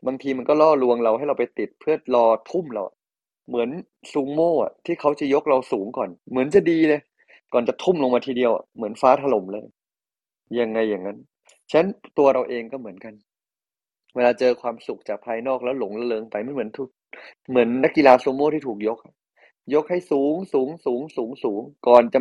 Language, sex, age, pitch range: Thai, male, 20-39, 110-135 Hz